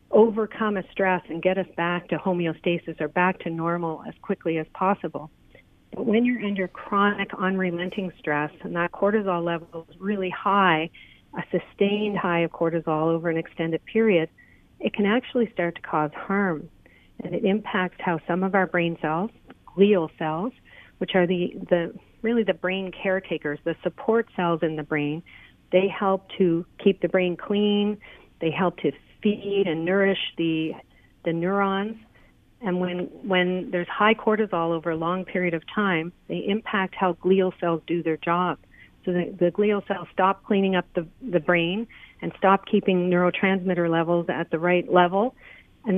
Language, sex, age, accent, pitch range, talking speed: English, female, 40-59, American, 170-200 Hz, 170 wpm